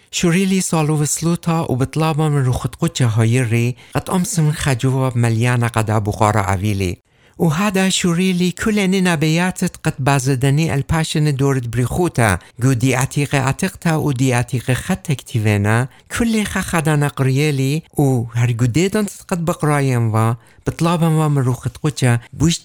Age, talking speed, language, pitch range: 60-79, 125 wpm, English, 120-165 Hz